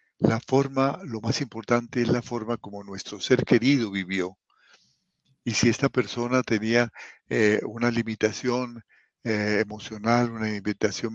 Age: 50-69